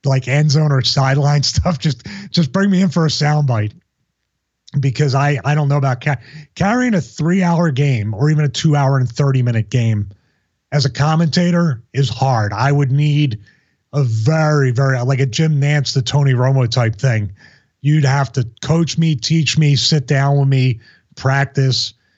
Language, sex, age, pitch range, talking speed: English, male, 30-49, 125-155 Hz, 180 wpm